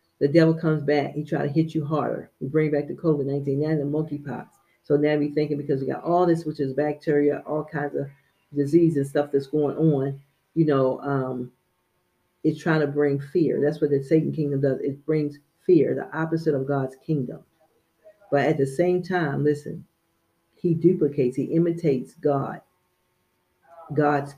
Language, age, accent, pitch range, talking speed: English, 40-59, American, 140-160 Hz, 180 wpm